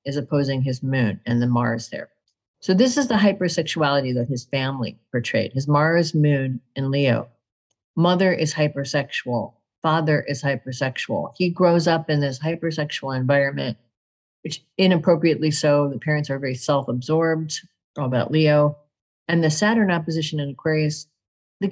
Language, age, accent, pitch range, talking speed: English, 50-69, American, 130-165 Hz, 145 wpm